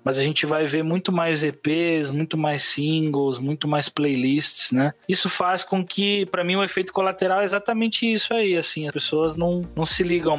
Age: 20-39